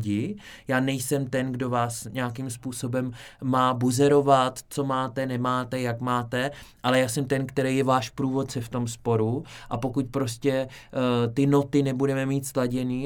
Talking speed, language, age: 150 wpm, Czech, 20-39